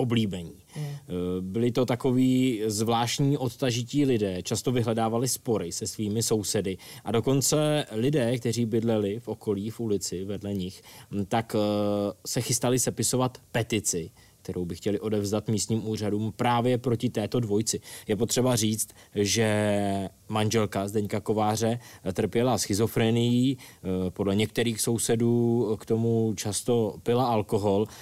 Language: Czech